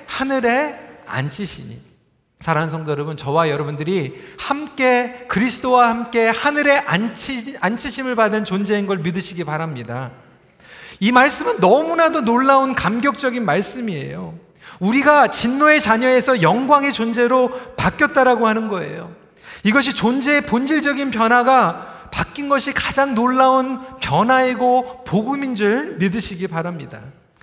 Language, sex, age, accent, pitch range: Korean, male, 40-59, native, 205-275 Hz